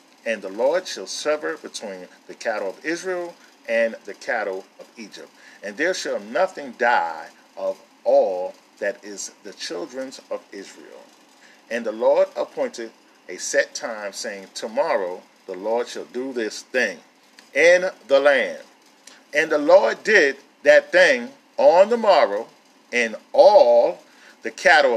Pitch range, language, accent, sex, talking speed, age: 175-285 Hz, English, American, male, 140 wpm, 40-59